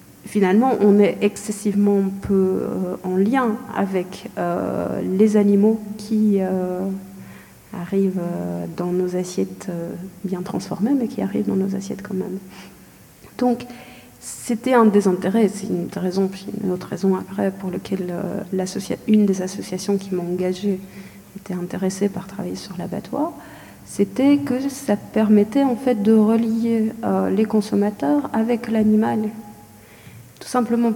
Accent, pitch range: French, 190-225 Hz